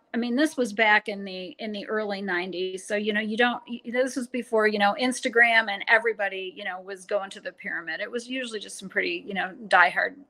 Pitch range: 200-245 Hz